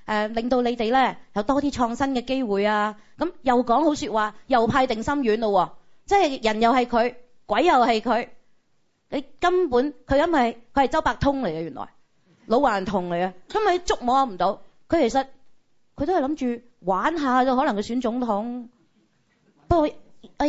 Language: Chinese